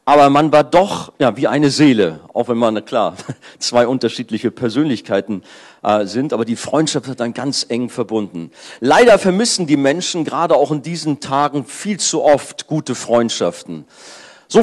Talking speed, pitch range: 170 wpm, 110-140 Hz